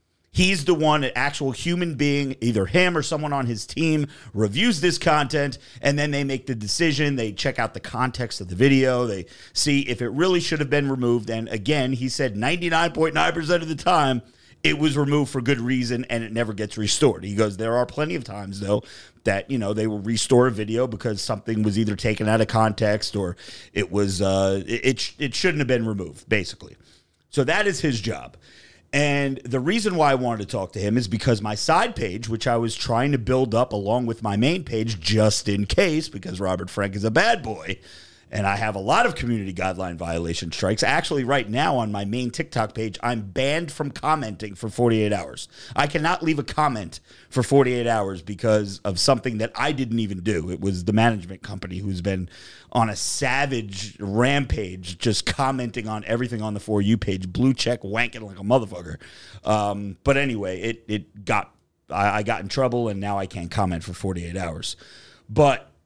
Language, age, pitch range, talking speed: English, 40-59, 100-135 Hz, 205 wpm